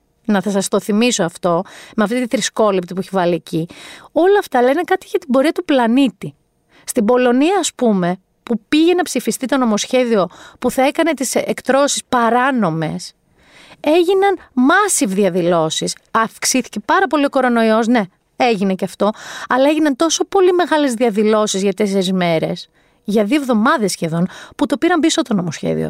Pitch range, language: 210-305 Hz, Greek